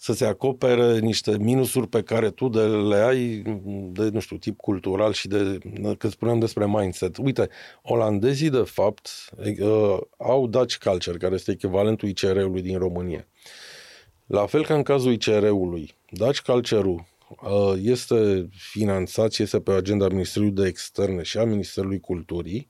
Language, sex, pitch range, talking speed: Romanian, male, 95-120 Hz, 145 wpm